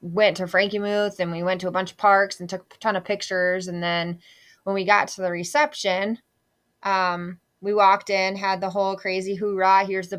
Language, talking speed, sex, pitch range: English, 220 wpm, female, 180-210 Hz